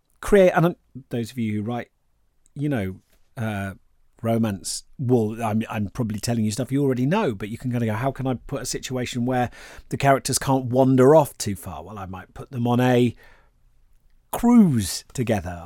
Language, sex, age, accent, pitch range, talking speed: English, male, 40-59, British, 115-155 Hz, 190 wpm